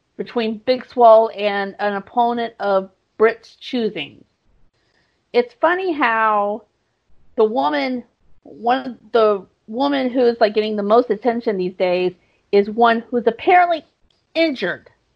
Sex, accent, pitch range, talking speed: female, American, 200-245 Hz, 125 wpm